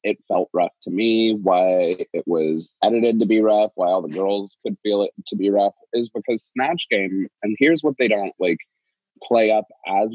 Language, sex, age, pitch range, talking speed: English, male, 20-39, 95-125 Hz, 205 wpm